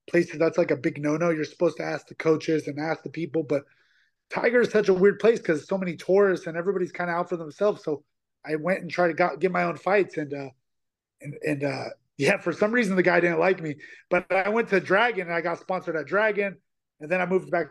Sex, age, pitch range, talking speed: male, 30-49, 155-195 Hz, 260 wpm